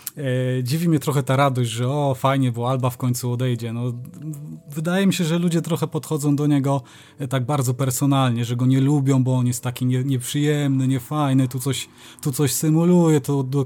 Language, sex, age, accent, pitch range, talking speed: Polish, male, 20-39, native, 130-150 Hz, 190 wpm